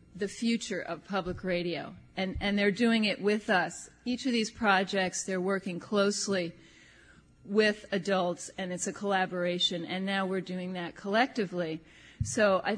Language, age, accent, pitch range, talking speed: English, 40-59, American, 180-215 Hz, 155 wpm